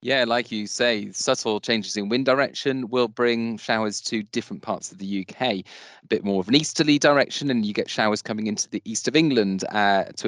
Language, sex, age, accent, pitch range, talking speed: English, male, 30-49, British, 100-120 Hz, 215 wpm